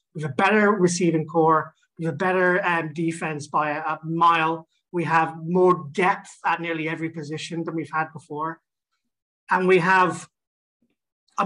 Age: 30-49